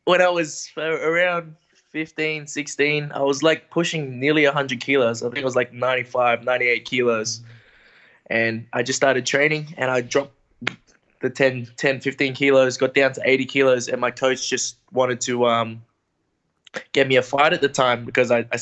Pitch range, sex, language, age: 125-140 Hz, male, English, 20-39